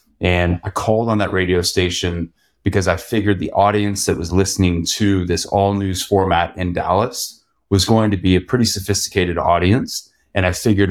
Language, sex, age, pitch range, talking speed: English, male, 30-49, 85-100 Hz, 180 wpm